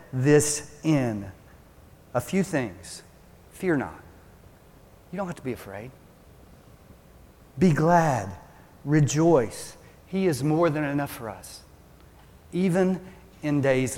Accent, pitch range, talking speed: American, 115-155 Hz, 110 wpm